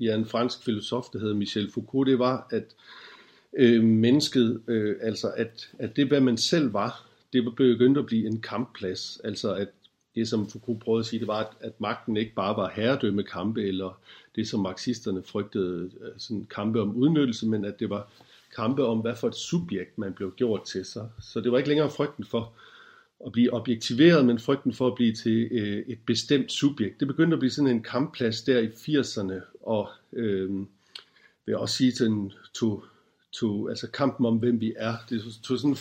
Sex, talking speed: male, 200 wpm